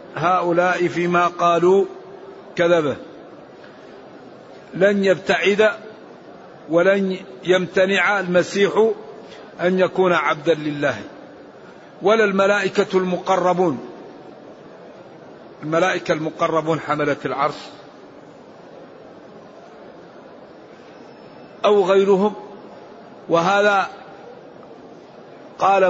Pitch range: 175-200 Hz